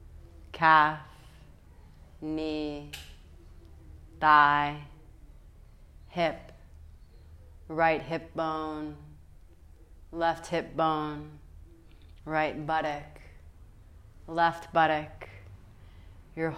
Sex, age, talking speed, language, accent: female, 30-49, 55 wpm, English, American